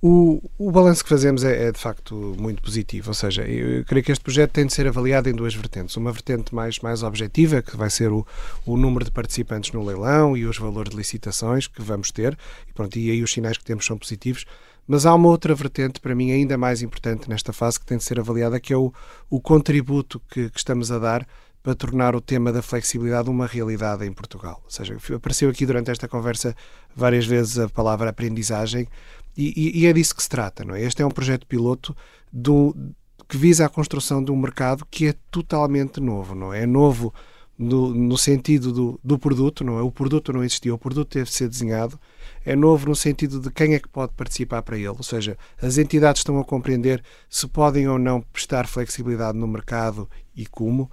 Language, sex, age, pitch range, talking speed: Portuguese, male, 30-49, 115-140 Hz, 205 wpm